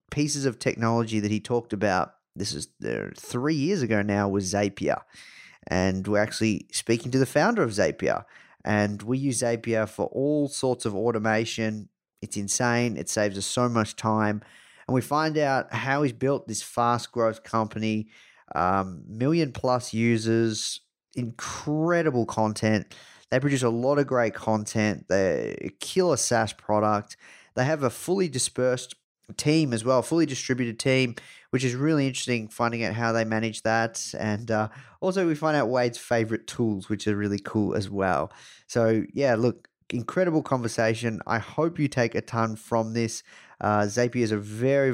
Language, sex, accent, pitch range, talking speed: English, male, Australian, 110-135 Hz, 165 wpm